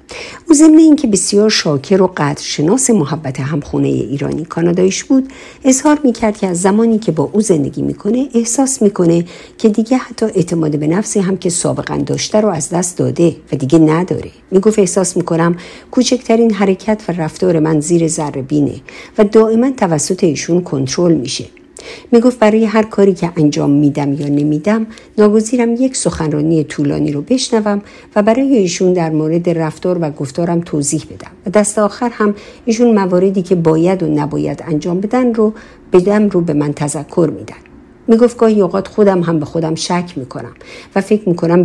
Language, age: Persian, 50-69